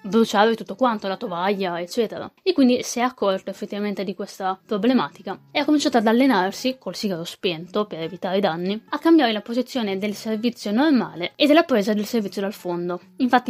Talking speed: 185 wpm